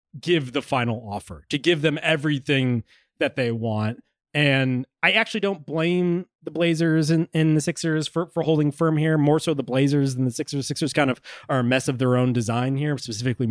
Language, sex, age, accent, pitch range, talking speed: English, male, 20-39, American, 130-165 Hz, 200 wpm